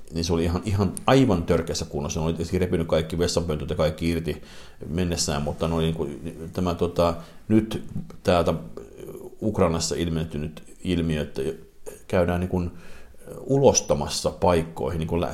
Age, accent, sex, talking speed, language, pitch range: 50-69, native, male, 145 wpm, Finnish, 80-95 Hz